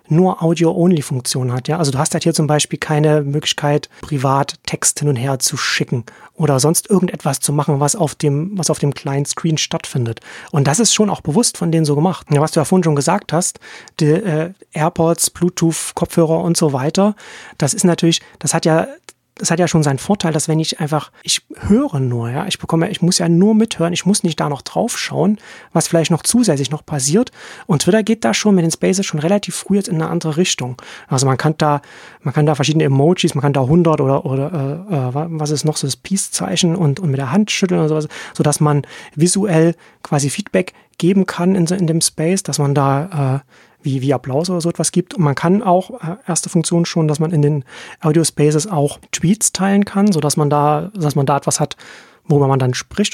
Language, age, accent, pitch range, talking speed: German, 30-49, German, 145-175 Hz, 220 wpm